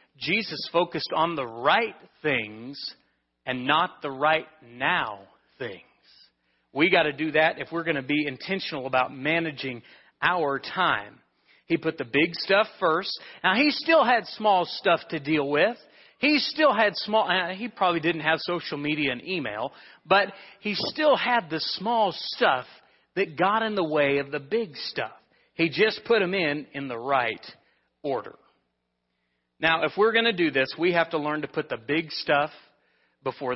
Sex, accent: male, American